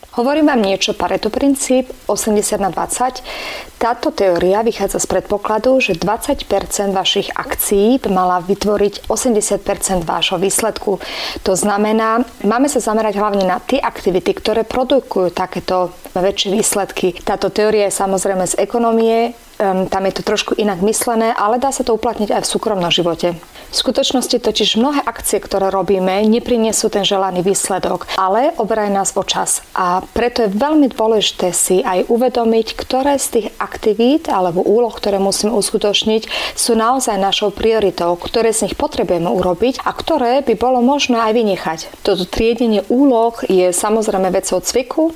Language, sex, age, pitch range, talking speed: Slovak, female, 30-49, 190-235 Hz, 150 wpm